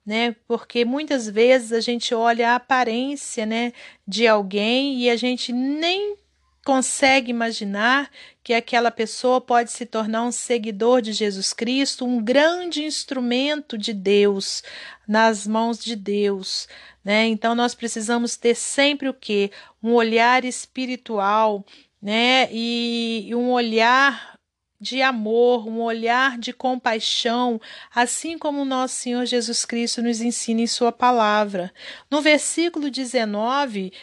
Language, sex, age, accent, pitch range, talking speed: Portuguese, female, 40-59, Brazilian, 220-260 Hz, 130 wpm